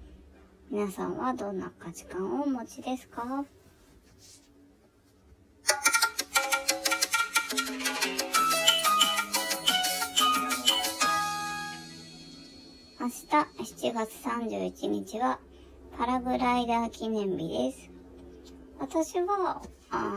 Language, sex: Japanese, male